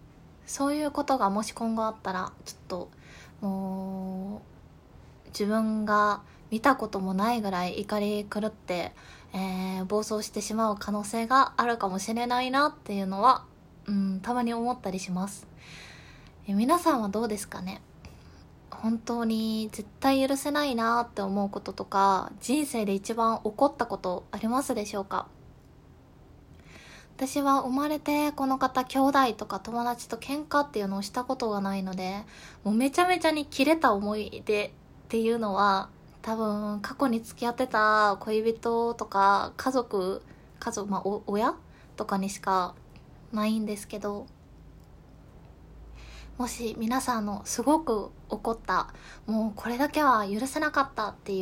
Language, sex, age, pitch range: Japanese, female, 20-39, 200-260 Hz